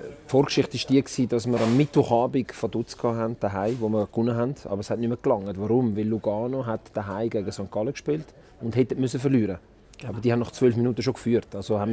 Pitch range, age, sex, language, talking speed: 110-135 Hz, 30-49, male, German, 215 wpm